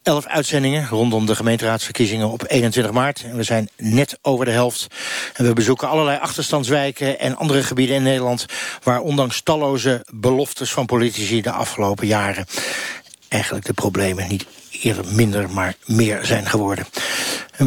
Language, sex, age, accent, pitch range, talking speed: Dutch, male, 60-79, Dutch, 115-140 Hz, 155 wpm